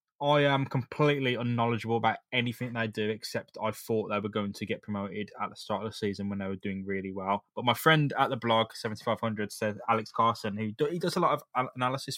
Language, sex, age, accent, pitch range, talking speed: English, male, 10-29, British, 105-120 Hz, 220 wpm